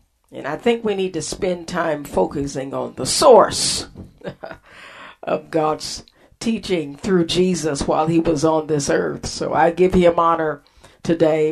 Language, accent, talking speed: English, American, 150 wpm